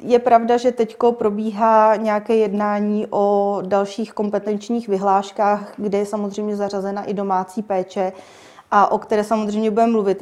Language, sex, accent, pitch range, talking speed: Czech, female, native, 200-215 Hz, 140 wpm